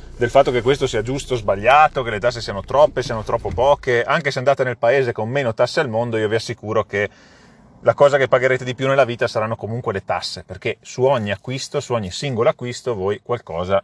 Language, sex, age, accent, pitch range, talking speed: Italian, male, 30-49, native, 105-130 Hz, 225 wpm